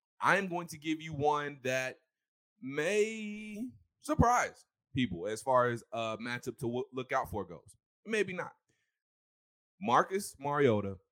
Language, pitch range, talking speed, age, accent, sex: English, 110-150 Hz, 130 wpm, 20-39, American, male